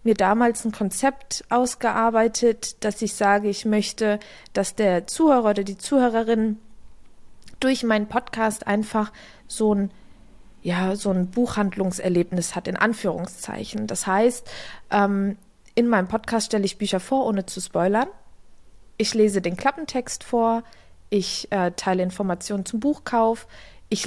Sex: female